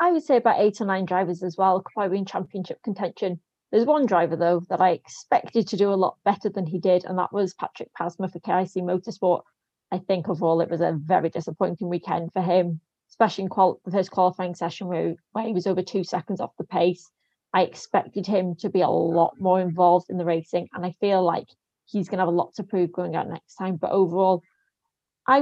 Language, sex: English, female